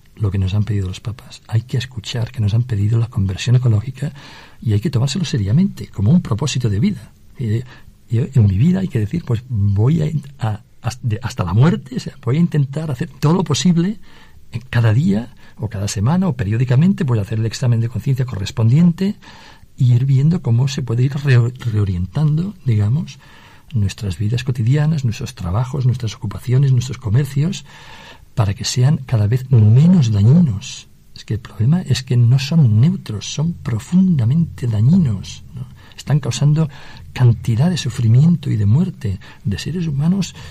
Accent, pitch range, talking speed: Spanish, 105-145 Hz, 160 wpm